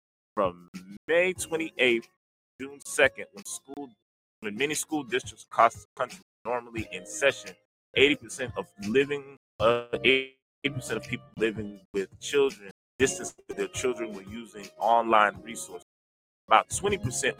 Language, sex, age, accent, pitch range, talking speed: English, male, 30-49, American, 100-150 Hz, 130 wpm